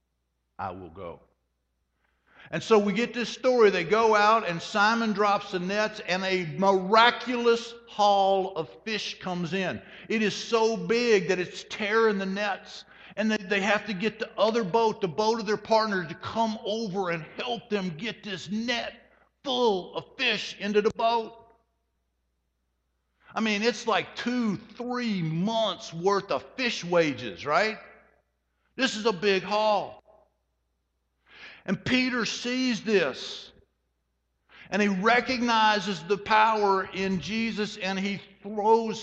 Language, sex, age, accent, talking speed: English, male, 60-79, American, 145 wpm